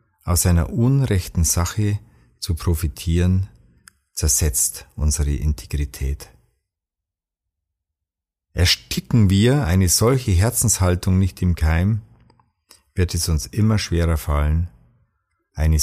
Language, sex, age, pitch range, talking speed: German, male, 50-69, 75-95 Hz, 90 wpm